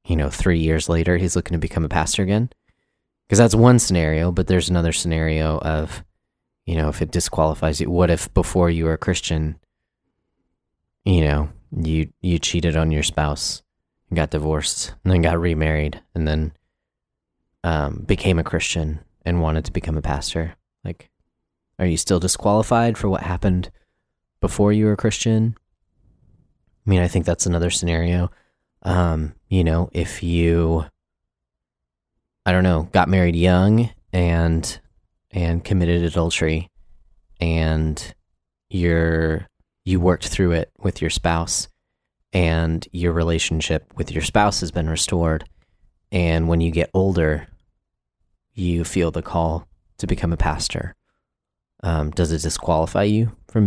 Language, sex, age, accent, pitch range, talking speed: English, male, 20-39, American, 80-95 Hz, 150 wpm